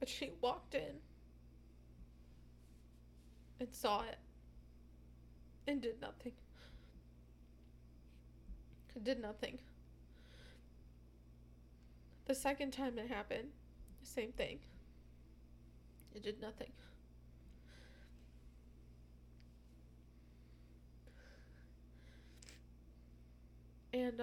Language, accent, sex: English, American, female